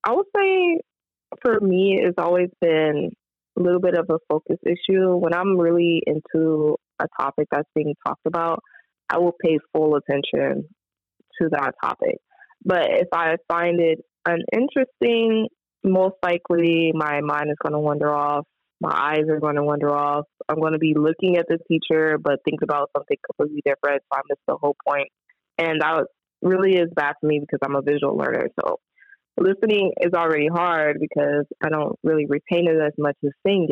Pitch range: 150-185 Hz